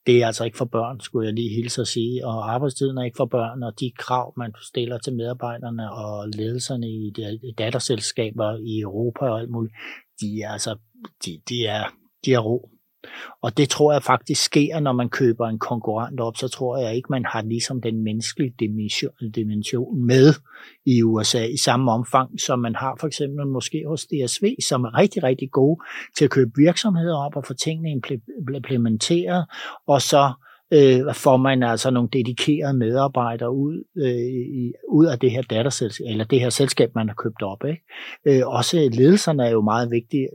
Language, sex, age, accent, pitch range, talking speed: Danish, male, 60-79, native, 115-140 Hz, 175 wpm